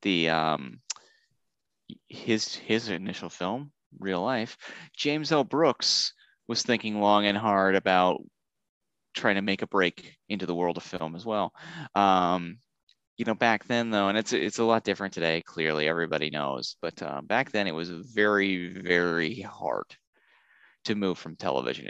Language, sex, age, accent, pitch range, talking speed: English, male, 30-49, American, 85-110 Hz, 160 wpm